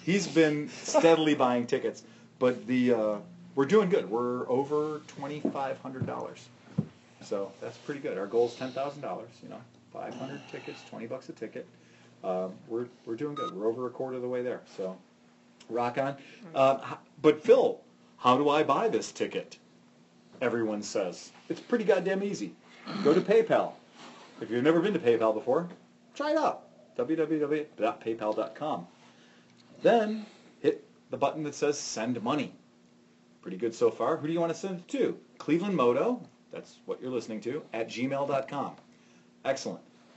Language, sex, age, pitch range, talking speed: English, male, 40-59, 115-160 Hz, 155 wpm